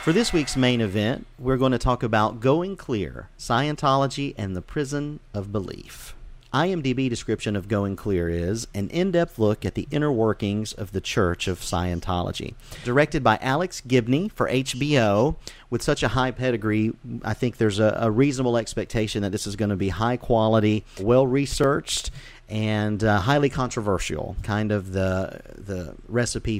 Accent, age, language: American, 40-59, English